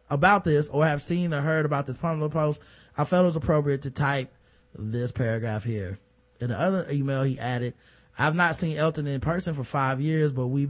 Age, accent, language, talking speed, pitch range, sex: 20-39, American, English, 215 wpm, 125-160 Hz, male